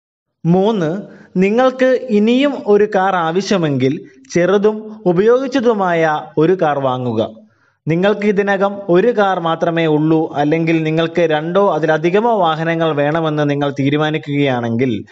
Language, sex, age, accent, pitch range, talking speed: Malayalam, male, 20-39, native, 155-210 Hz, 100 wpm